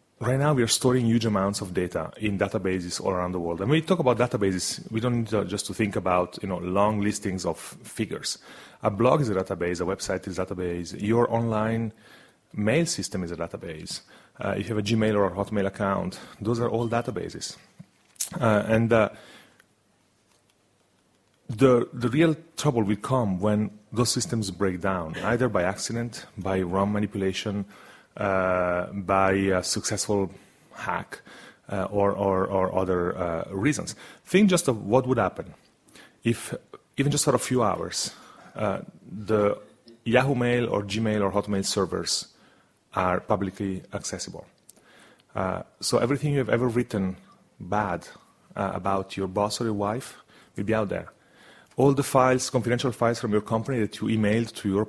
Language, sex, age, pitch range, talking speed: English, male, 30-49, 95-120 Hz, 170 wpm